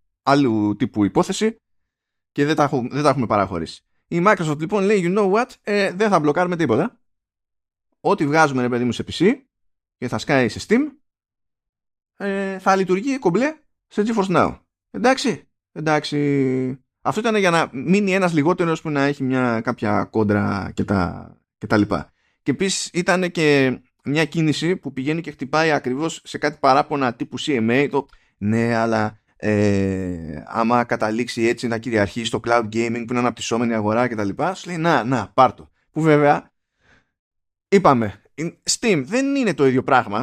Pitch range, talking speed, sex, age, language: 110-165 Hz, 150 wpm, male, 20-39, Greek